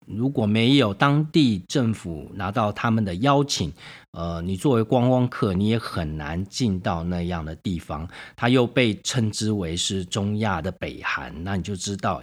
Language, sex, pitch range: Chinese, male, 90-125 Hz